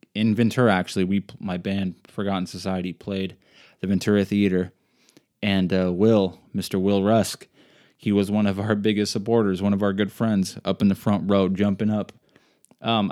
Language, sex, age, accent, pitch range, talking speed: English, male, 20-39, American, 95-110 Hz, 175 wpm